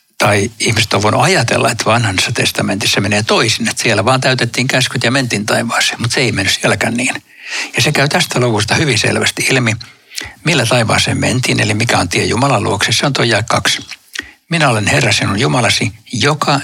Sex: male